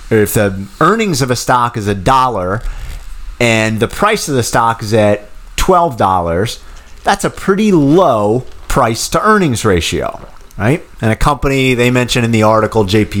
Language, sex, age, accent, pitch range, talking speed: English, male, 30-49, American, 105-140 Hz, 155 wpm